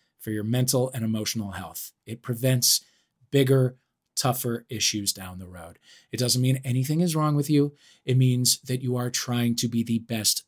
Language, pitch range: English, 115-155 Hz